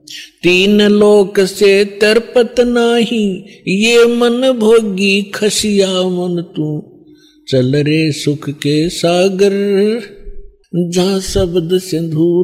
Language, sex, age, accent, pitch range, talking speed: Hindi, male, 50-69, native, 150-200 Hz, 90 wpm